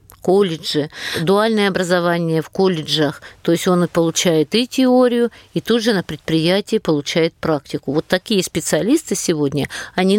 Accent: American